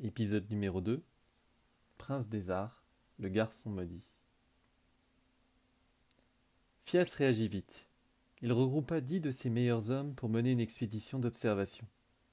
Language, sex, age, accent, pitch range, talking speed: French, male, 30-49, French, 110-130 Hz, 115 wpm